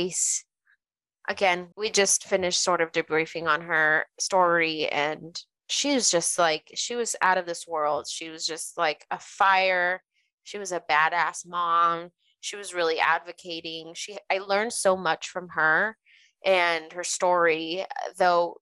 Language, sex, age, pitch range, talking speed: English, female, 20-39, 165-190 Hz, 150 wpm